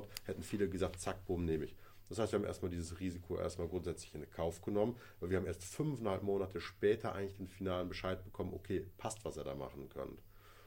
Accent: German